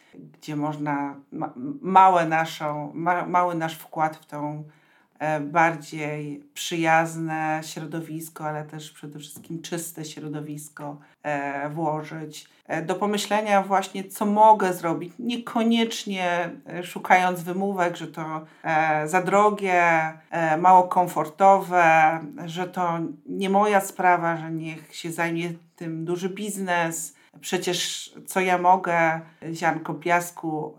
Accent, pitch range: native, 160-190 Hz